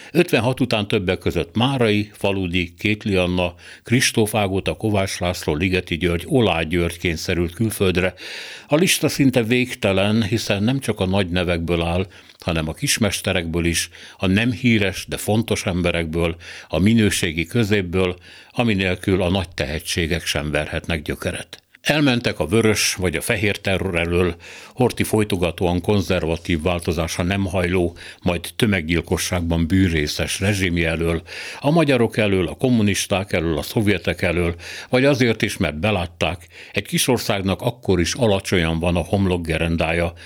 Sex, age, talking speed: male, 60-79, 135 wpm